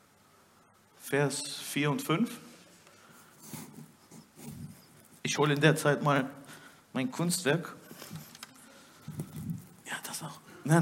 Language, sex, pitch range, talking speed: German, male, 145-230 Hz, 90 wpm